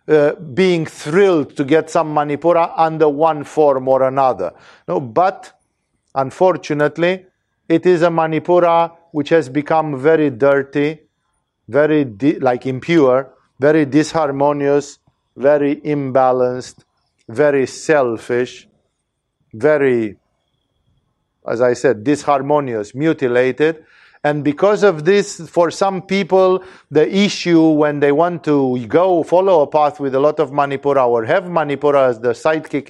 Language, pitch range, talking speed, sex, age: English, 140-180 Hz, 125 wpm, male, 50-69